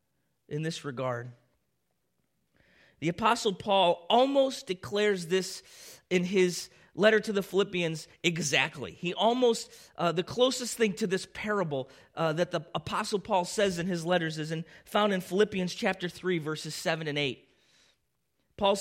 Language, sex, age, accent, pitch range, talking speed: English, male, 30-49, American, 130-190 Hz, 145 wpm